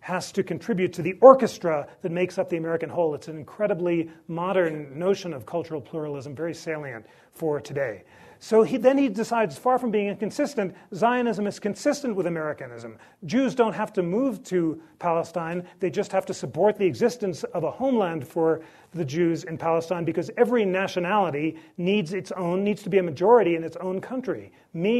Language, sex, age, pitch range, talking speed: English, male, 40-59, 155-200 Hz, 180 wpm